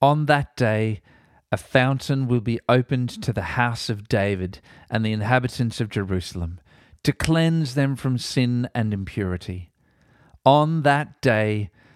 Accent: Australian